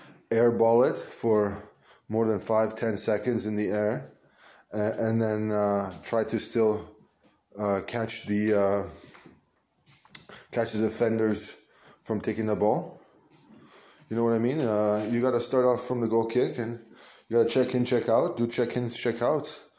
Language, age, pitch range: Hebrew, 20-39, 105-120 Hz